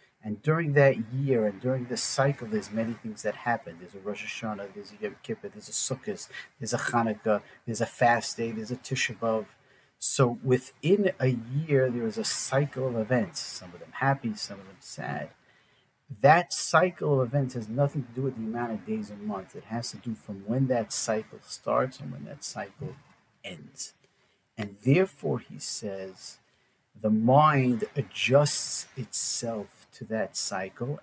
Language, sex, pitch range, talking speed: English, male, 115-145 Hz, 180 wpm